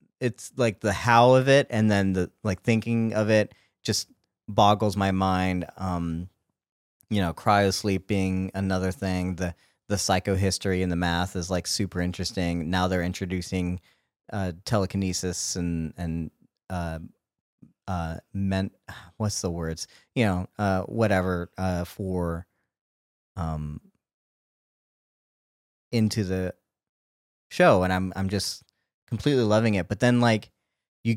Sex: male